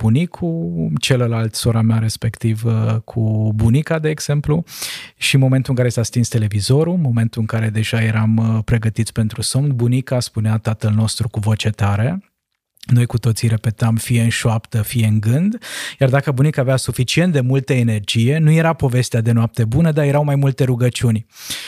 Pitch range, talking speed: 115-130 Hz, 170 wpm